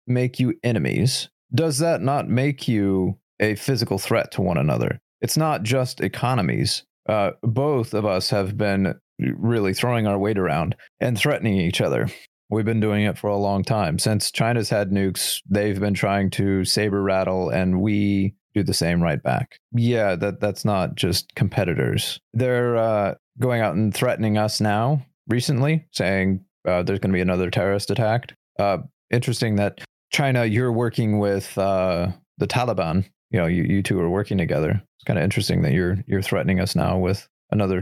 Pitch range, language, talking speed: 100-125 Hz, English, 180 wpm